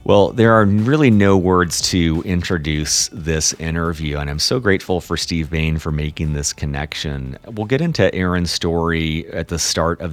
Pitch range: 80-95 Hz